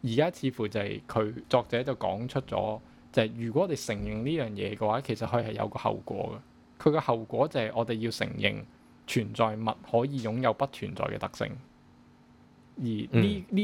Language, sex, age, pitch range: Chinese, male, 20-39, 105-130 Hz